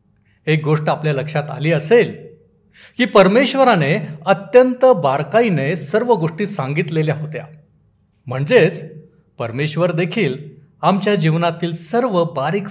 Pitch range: 140-185 Hz